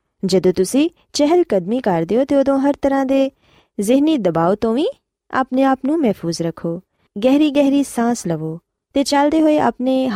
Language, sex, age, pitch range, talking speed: Punjabi, female, 20-39, 190-275 Hz, 160 wpm